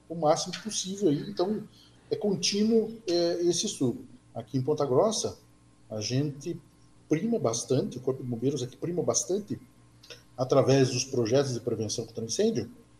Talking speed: 140 wpm